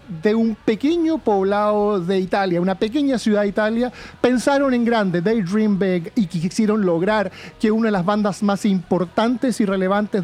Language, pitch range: Spanish, 185-225 Hz